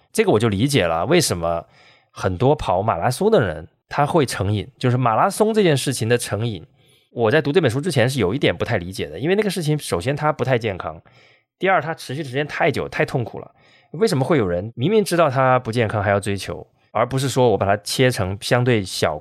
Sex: male